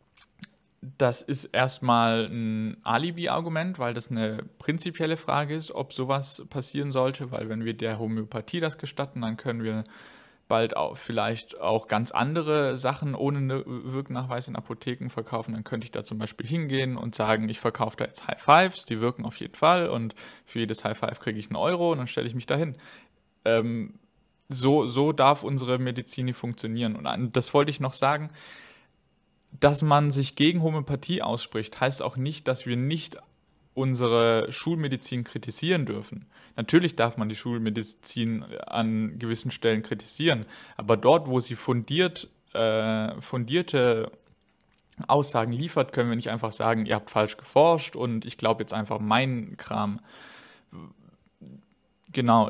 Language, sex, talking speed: English, male, 155 wpm